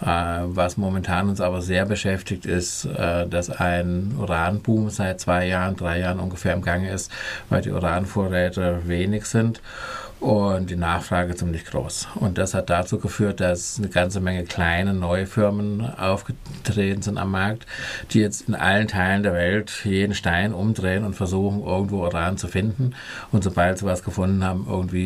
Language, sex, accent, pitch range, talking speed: German, male, German, 90-105 Hz, 165 wpm